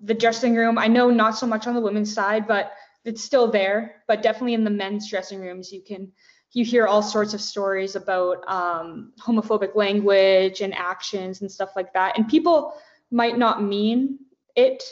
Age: 20-39